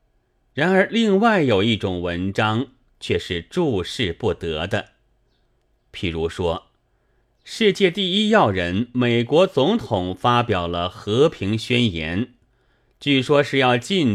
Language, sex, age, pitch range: Chinese, male, 30-49, 105-145 Hz